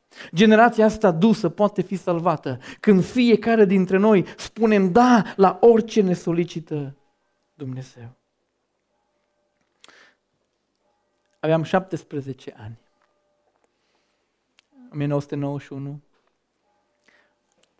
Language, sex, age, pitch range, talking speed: Romanian, male, 40-59, 140-185 Hz, 75 wpm